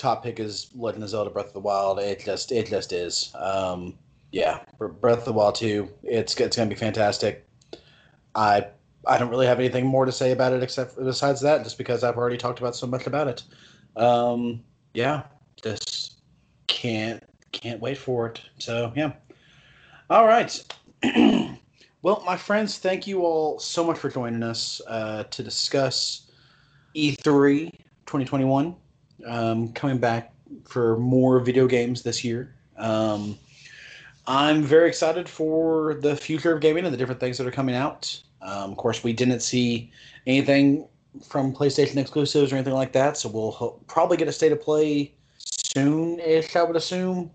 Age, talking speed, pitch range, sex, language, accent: 30-49, 170 wpm, 115-145 Hz, male, English, American